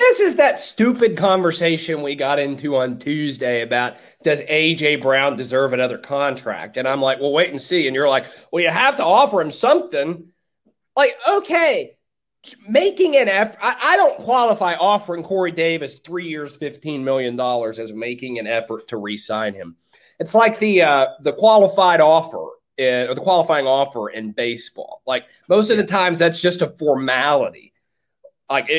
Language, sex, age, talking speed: English, male, 30-49, 170 wpm